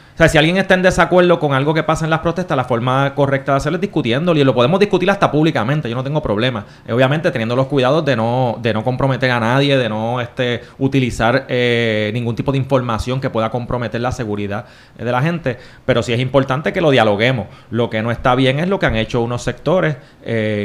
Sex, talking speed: male, 235 wpm